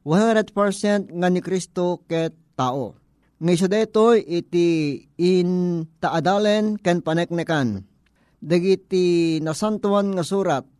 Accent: native